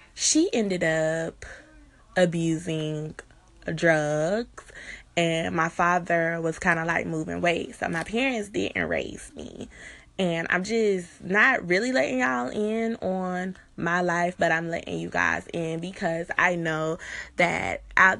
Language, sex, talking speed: English, female, 140 wpm